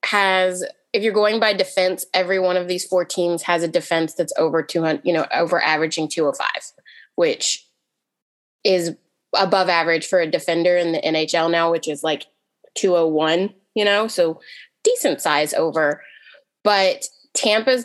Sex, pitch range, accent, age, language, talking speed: female, 165-190 Hz, American, 20-39, English, 155 wpm